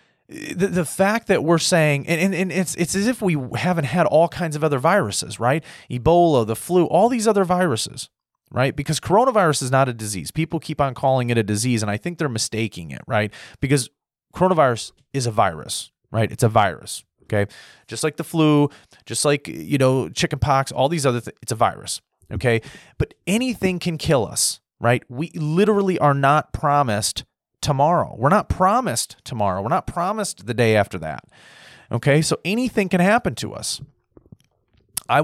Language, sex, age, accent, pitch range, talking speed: English, male, 30-49, American, 115-165 Hz, 180 wpm